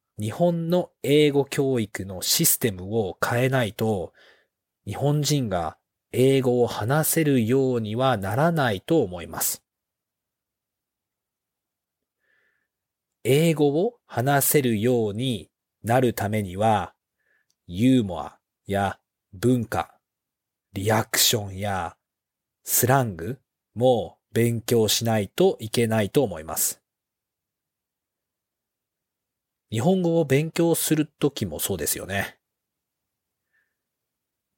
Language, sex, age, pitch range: Japanese, male, 40-59, 110-135 Hz